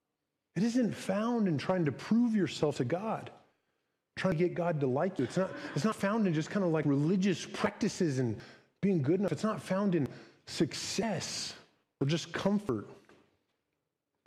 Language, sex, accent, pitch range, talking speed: English, male, American, 155-200 Hz, 180 wpm